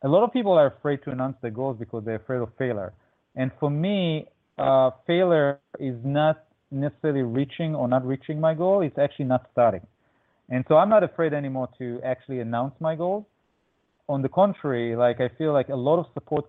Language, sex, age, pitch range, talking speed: English, male, 30-49, 130-165 Hz, 200 wpm